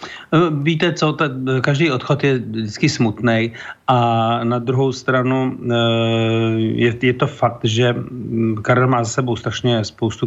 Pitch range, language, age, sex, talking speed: 115-130 Hz, Slovak, 40-59, male, 125 wpm